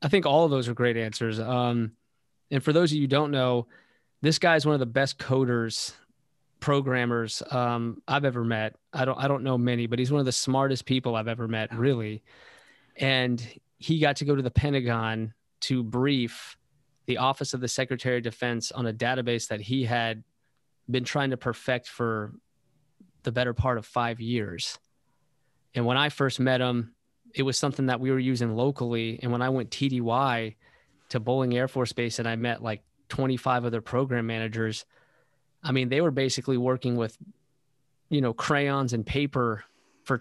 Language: English